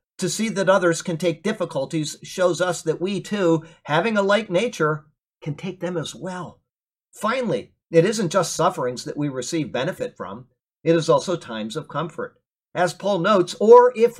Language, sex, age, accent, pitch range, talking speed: English, male, 50-69, American, 165-210 Hz, 180 wpm